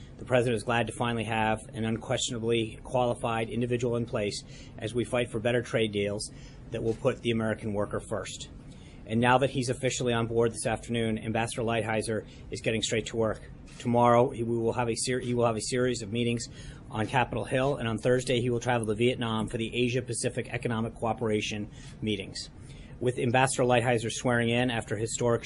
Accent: American